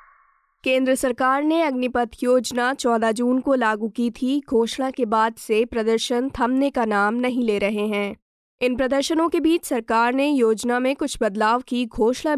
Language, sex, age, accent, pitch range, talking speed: Hindi, female, 20-39, native, 220-265 Hz, 170 wpm